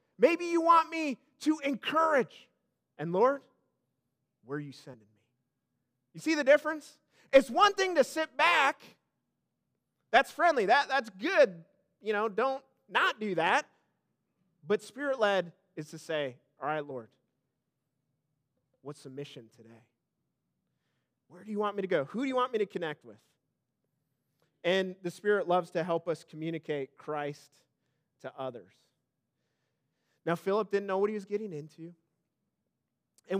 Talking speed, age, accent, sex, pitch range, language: 145 wpm, 30-49, American, male, 145-210 Hz, English